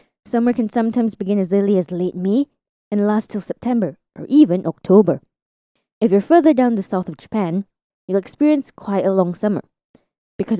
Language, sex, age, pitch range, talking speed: English, female, 20-39, 190-270 Hz, 175 wpm